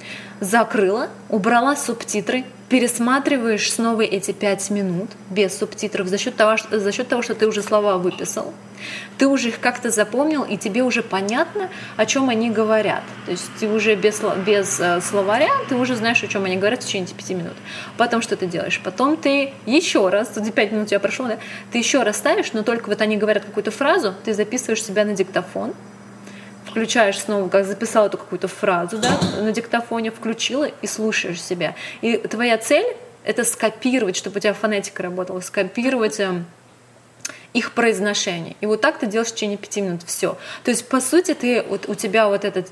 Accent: native